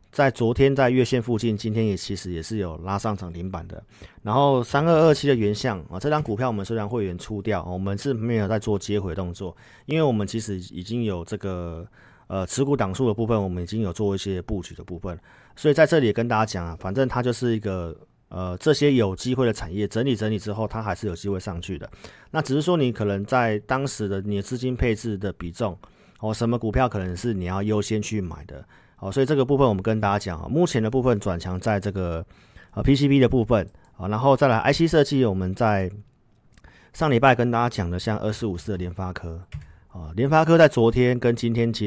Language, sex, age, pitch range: Chinese, male, 40-59, 95-125 Hz